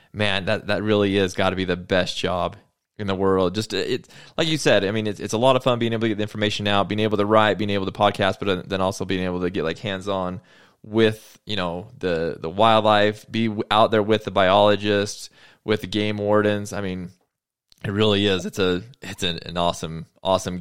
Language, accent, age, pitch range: English, American, 20-39, 95-110 Hz